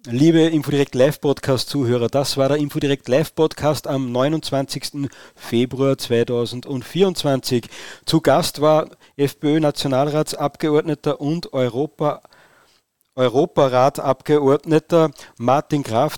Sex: male